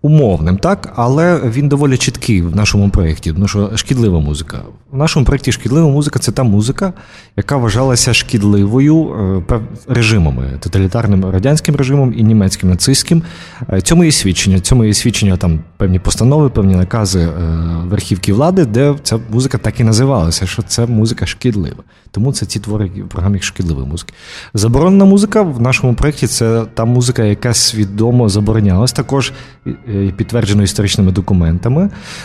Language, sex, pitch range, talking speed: Ukrainian, male, 95-125 Hz, 145 wpm